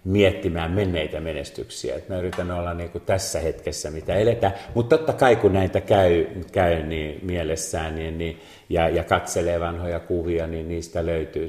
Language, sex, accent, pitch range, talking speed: Finnish, male, native, 80-95 Hz, 160 wpm